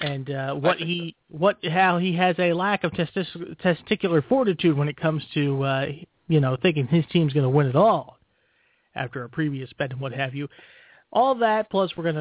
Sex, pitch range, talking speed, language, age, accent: male, 150-195 Hz, 210 wpm, English, 30-49, American